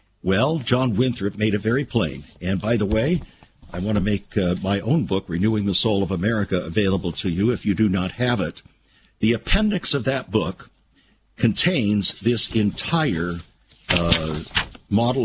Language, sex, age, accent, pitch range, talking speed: English, male, 60-79, American, 100-135 Hz, 170 wpm